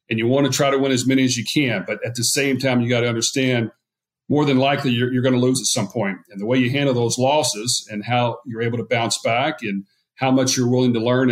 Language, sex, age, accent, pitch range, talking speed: English, male, 40-59, American, 115-135 Hz, 280 wpm